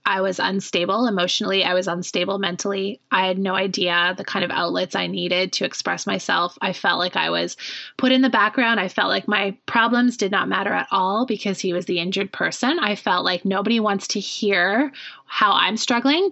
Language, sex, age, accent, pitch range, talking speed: English, female, 20-39, American, 180-215 Hz, 205 wpm